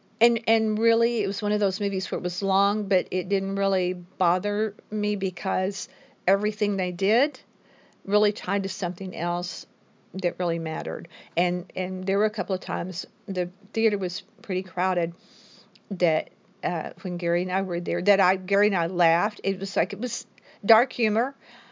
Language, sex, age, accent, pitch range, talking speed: English, female, 50-69, American, 185-235 Hz, 180 wpm